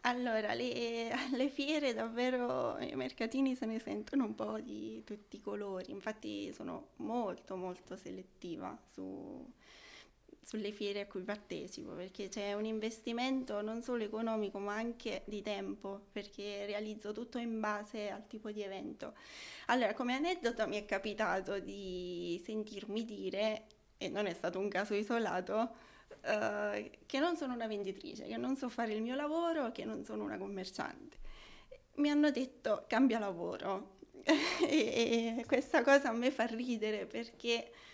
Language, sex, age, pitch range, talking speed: Italian, female, 20-39, 205-250 Hz, 145 wpm